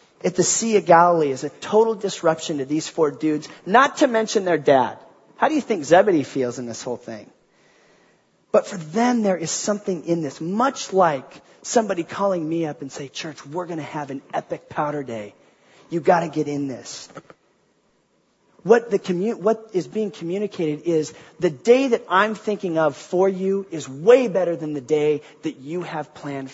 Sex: male